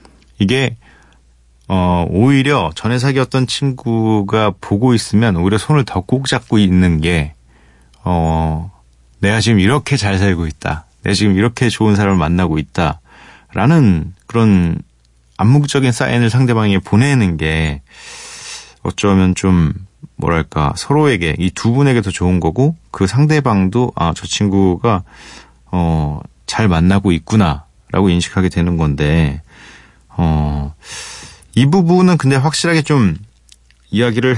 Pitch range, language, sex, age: 80-120 Hz, Korean, male, 30-49